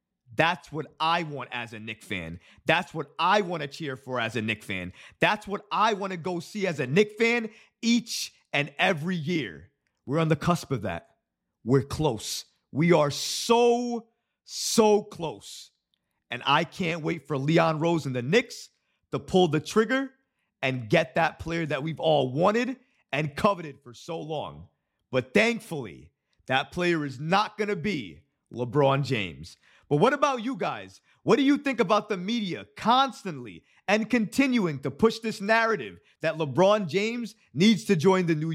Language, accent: English, American